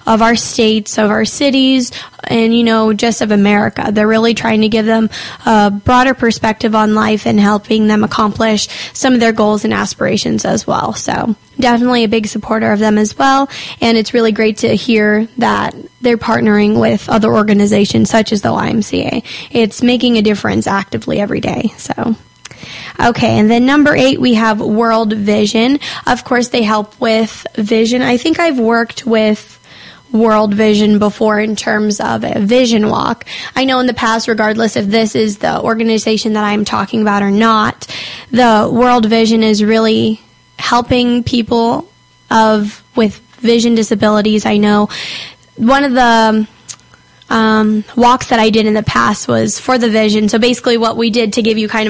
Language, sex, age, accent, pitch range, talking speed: English, female, 10-29, American, 215-240 Hz, 175 wpm